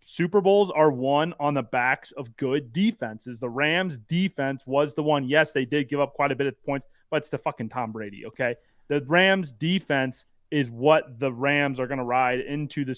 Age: 30-49